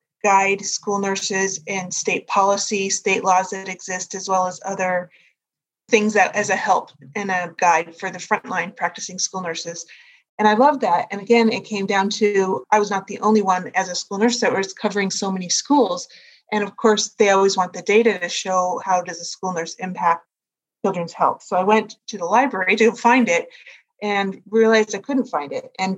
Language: English